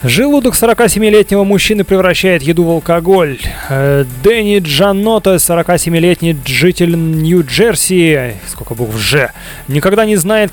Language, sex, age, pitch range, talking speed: Russian, male, 30-49, 165-200 Hz, 110 wpm